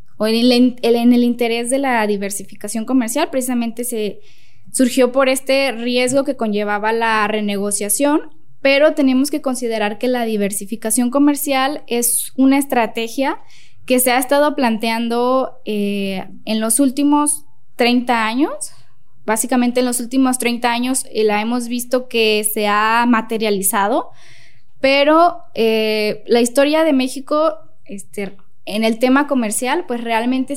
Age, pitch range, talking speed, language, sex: 10-29, 220-265 Hz, 135 wpm, Spanish, female